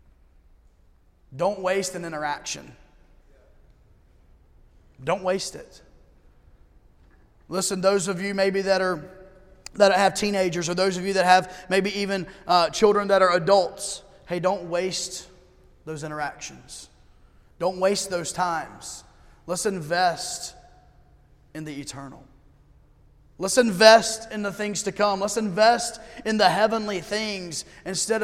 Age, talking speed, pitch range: 30-49, 125 wpm, 170-205 Hz